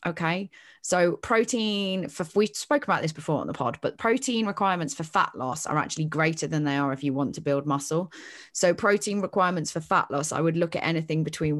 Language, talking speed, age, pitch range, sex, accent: English, 215 wpm, 20-39, 145-175 Hz, female, British